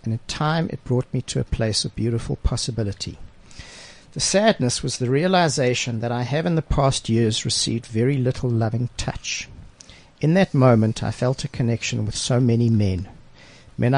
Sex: male